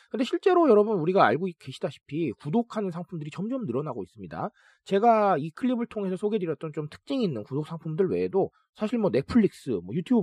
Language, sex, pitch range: Korean, male, 165-235 Hz